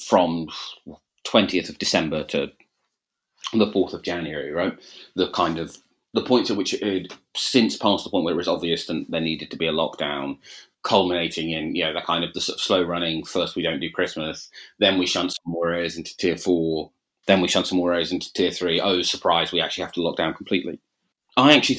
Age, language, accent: 30-49, English, British